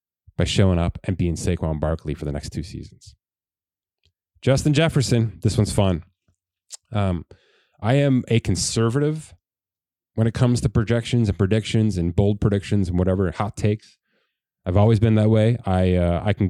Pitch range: 95-120 Hz